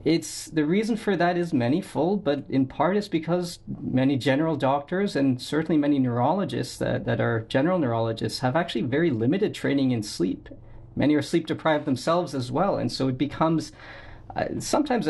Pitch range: 130-165 Hz